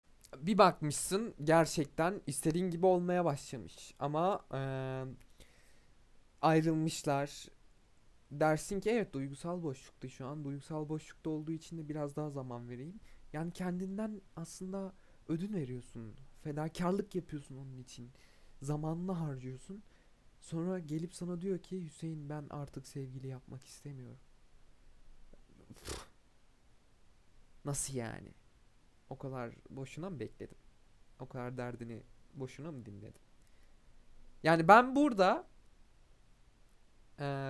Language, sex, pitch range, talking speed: Turkish, male, 130-170 Hz, 105 wpm